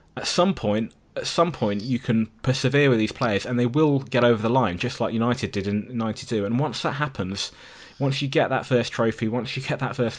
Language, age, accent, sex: English, 20-39, British, male